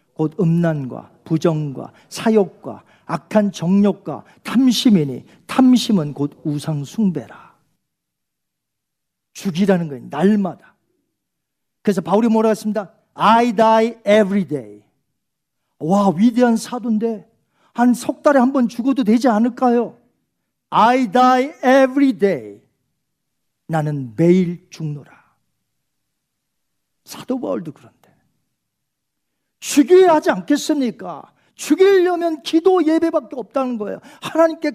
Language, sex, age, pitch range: Korean, male, 50-69, 170-255 Hz